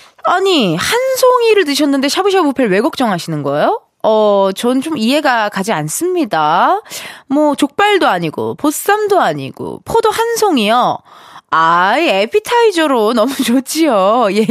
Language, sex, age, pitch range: Korean, female, 20-39, 200-320 Hz